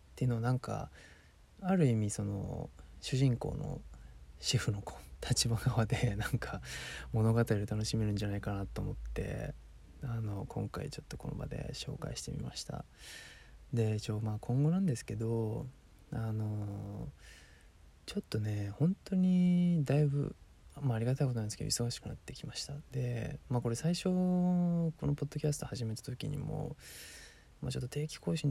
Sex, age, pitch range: male, 20-39, 100-140 Hz